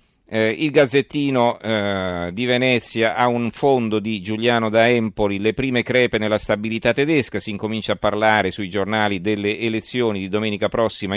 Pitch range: 105-125 Hz